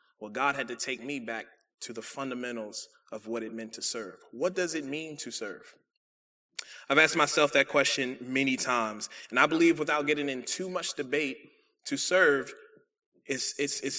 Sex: male